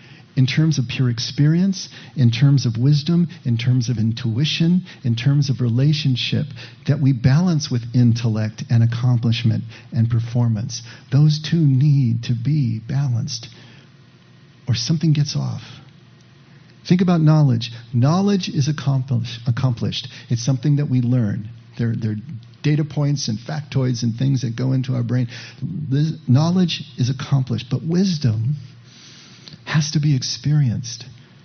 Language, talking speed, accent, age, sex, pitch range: English, 135 wpm, American, 50-69, male, 120-145 Hz